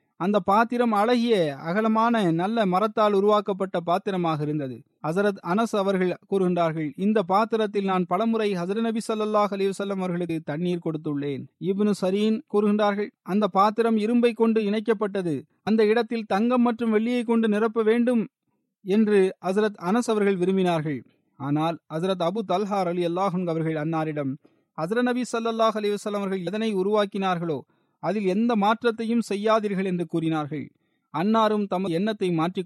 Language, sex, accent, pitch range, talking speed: Tamil, male, native, 180-225 Hz, 125 wpm